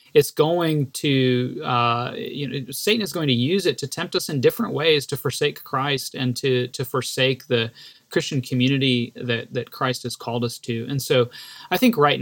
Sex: male